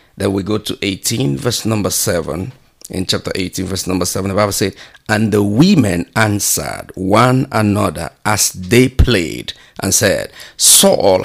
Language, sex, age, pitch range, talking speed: English, male, 50-69, 100-135 Hz, 155 wpm